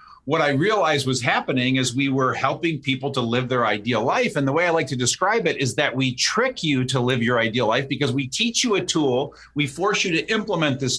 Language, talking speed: English, 245 wpm